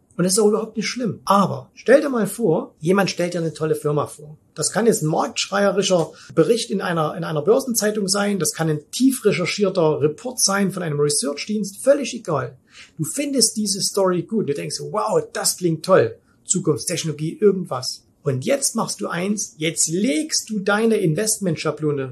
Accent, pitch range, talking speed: German, 155-220 Hz, 180 wpm